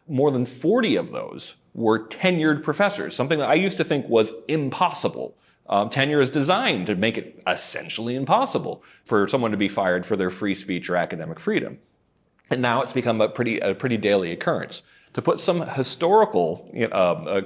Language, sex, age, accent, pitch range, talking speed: English, male, 40-59, American, 95-145 Hz, 180 wpm